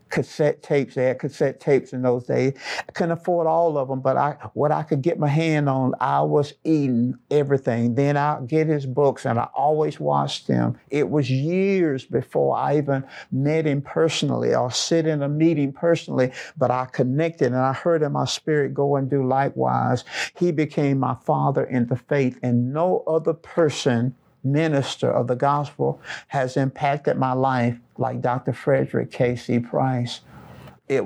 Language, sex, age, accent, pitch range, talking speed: English, male, 50-69, American, 125-150 Hz, 180 wpm